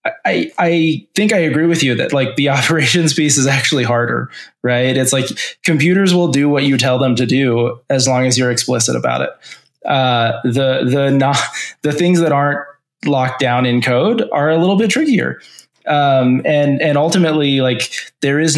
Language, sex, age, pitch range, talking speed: English, male, 20-39, 125-150 Hz, 185 wpm